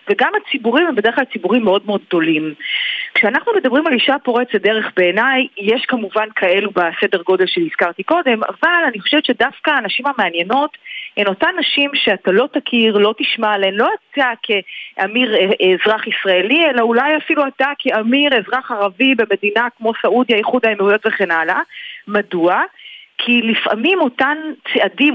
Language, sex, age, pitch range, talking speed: Hebrew, female, 30-49, 200-270 Hz, 150 wpm